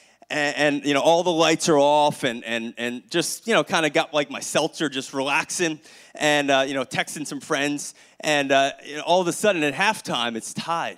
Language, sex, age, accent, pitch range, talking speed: English, male, 30-49, American, 160-230 Hz, 230 wpm